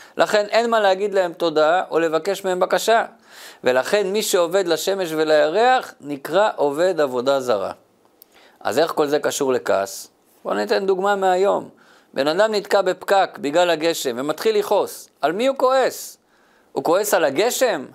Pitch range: 175-225 Hz